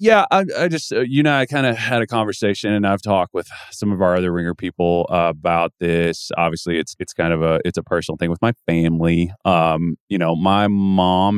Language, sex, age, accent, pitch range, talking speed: English, male, 30-49, American, 85-105 Hz, 230 wpm